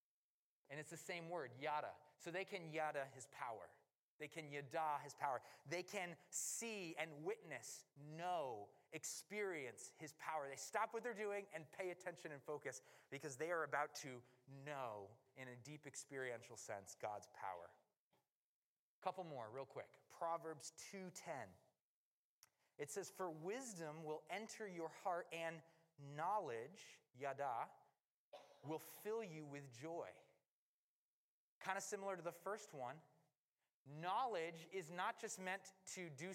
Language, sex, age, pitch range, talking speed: English, male, 30-49, 145-185 Hz, 140 wpm